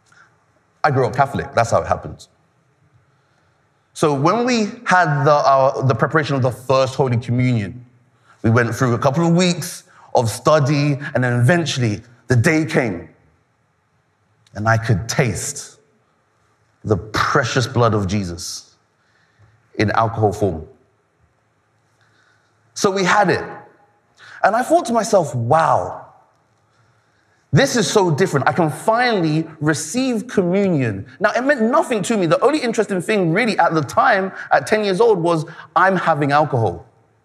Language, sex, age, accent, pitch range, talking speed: English, male, 30-49, British, 115-175 Hz, 145 wpm